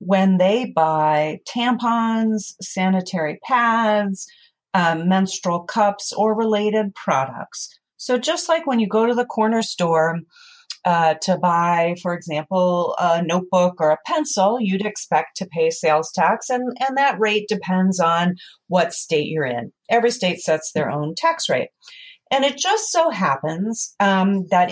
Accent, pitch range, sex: American, 170-235 Hz, female